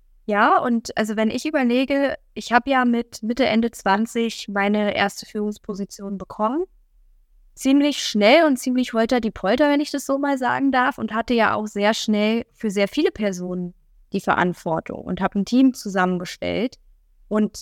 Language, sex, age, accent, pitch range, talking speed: German, female, 10-29, German, 200-245 Hz, 165 wpm